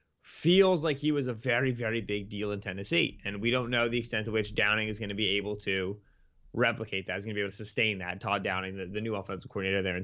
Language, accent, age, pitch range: English, American, 20-39, 105-130 Hz